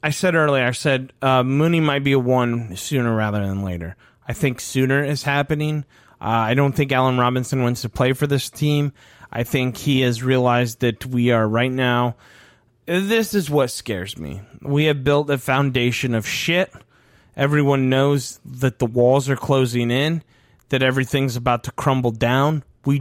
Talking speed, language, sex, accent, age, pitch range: 180 wpm, English, male, American, 30-49, 120-155 Hz